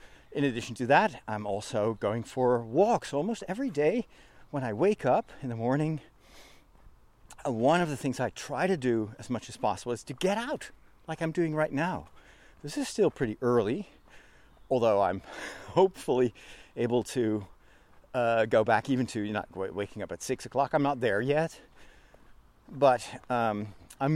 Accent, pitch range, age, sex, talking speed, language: American, 120-170 Hz, 40-59, male, 170 wpm, English